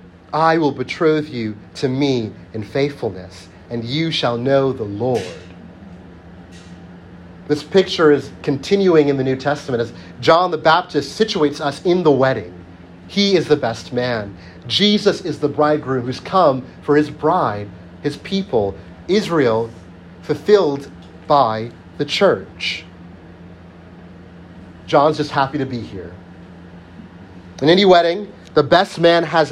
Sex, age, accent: male, 30-49, American